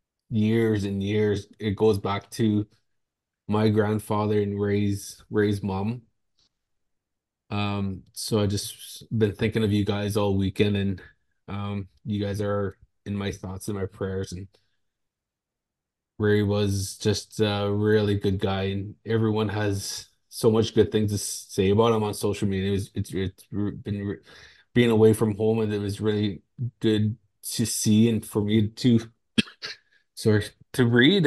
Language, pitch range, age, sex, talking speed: English, 100-110 Hz, 20-39, male, 155 wpm